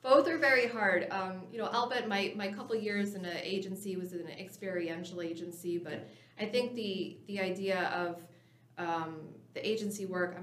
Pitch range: 165-195 Hz